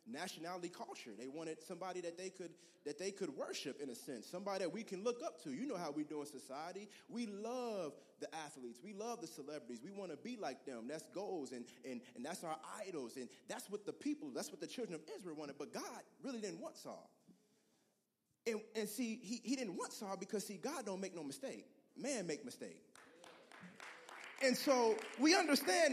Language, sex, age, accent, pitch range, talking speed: English, male, 30-49, American, 200-280 Hz, 210 wpm